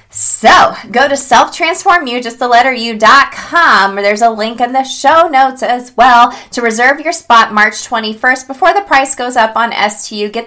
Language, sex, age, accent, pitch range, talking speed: English, female, 20-39, American, 180-230 Hz, 185 wpm